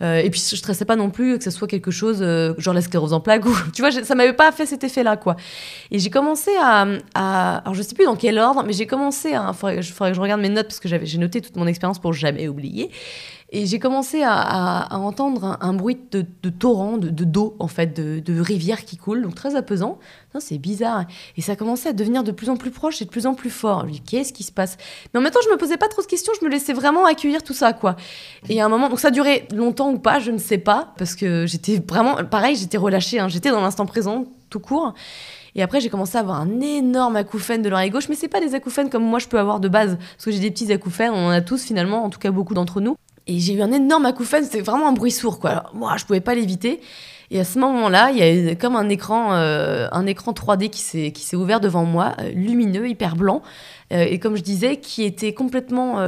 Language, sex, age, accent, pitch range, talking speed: French, female, 20-39, French, 185-245 Hz, 270 wpm